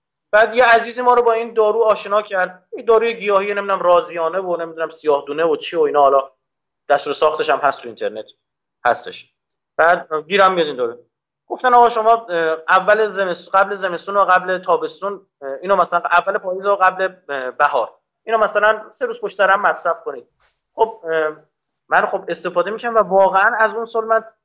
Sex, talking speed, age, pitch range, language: male, 170 wpm, 30-49, 170-220 Hz, Persian